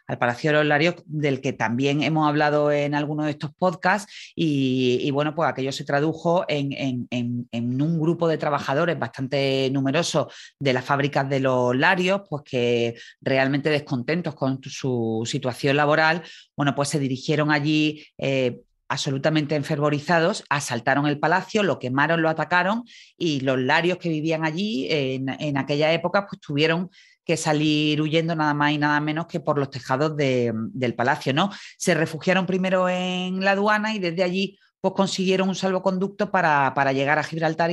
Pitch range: 140-180 Hz